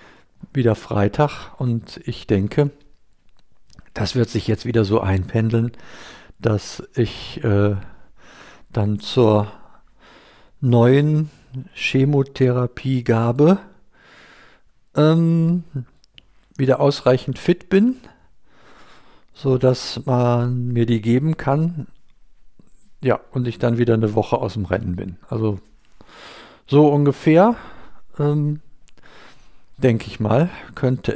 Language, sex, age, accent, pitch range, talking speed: German, male, 50-69, German, 110-145 Hz, 95 wpm